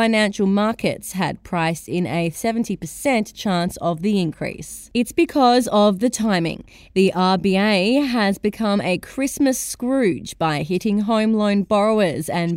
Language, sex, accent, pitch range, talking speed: English, female, Australian, 185-230 Hz, 140 wpm